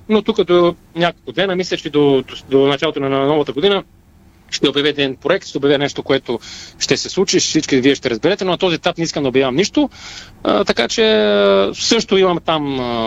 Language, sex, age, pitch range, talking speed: Bulgarian, male, 30-49, 140-175 Hz, 205 wpm